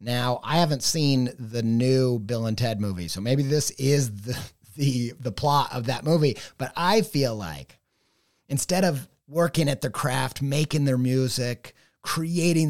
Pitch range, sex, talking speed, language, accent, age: 130-170 Hz, male, 165 wpm, English, American, 30-49